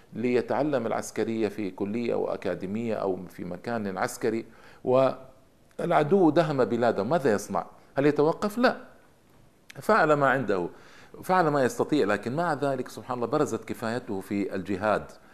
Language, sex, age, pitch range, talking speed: Arabic, male, 50-69, 105-135 Hz, 125 wpm